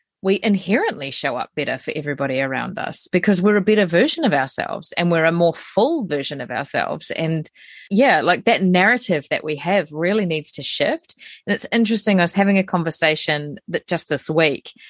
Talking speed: 195 wpm